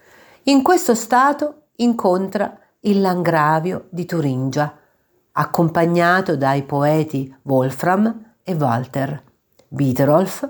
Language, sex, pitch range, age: Italian, female, 150-225 Hz, 50-69